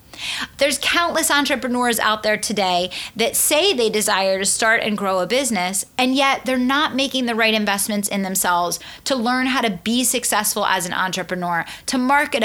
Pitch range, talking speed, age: 200-260 Hz, 180 wpm, 30-49